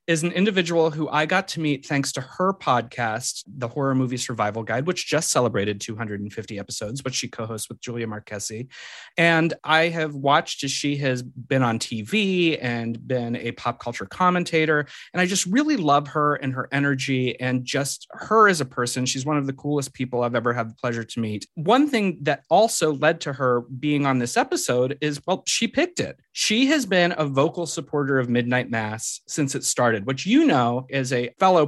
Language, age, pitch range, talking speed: English, 30-49, 120-160 Hz, 200 wpm